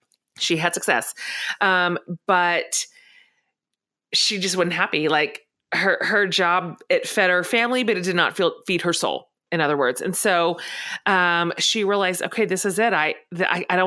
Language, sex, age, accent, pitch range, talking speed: English, female, 30-49, American, 170-215 Hz, 175 wpm